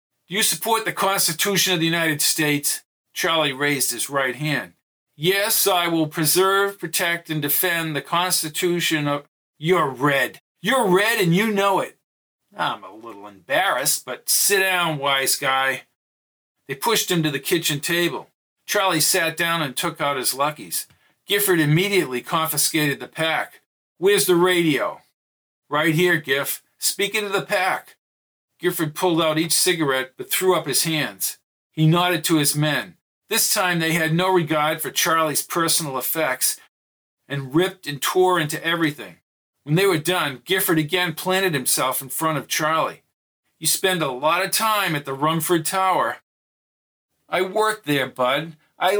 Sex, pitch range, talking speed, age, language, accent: male, 150-185 Hz, 155 wpm, 50-69, English, American